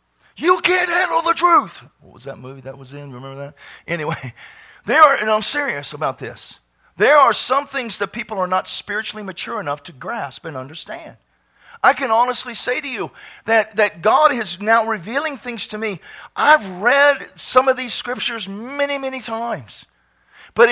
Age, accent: 50-69, American